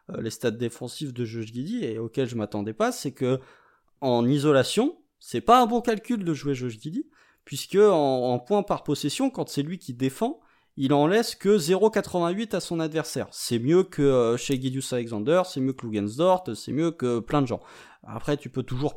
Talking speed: 200 wpm